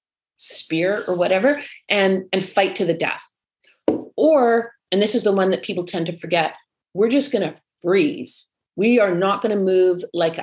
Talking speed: 175 wpm